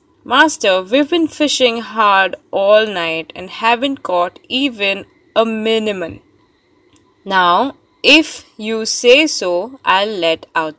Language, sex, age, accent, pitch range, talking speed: English, female, 20-39, Indian, 185-275 Hz, 115 wpm